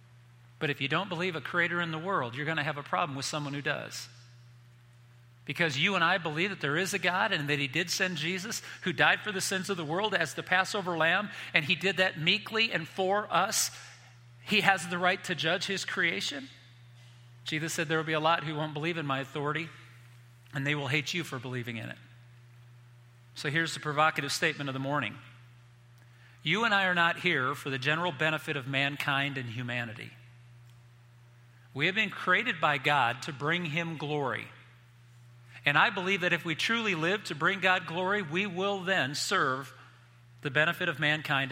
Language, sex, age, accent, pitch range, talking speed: English, male, 40-59, American, 120-175 Hz, 200 wpm